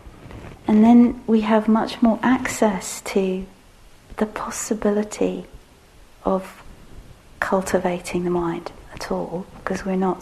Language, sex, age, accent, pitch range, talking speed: English, female, 40-59, British, 170-225 Hz, 110 wpm